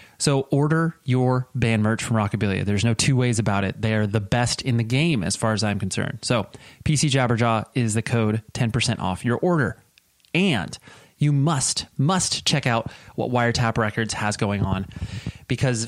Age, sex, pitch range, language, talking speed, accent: 30-49, male, 110-145 Hz, English, 180 wpm, American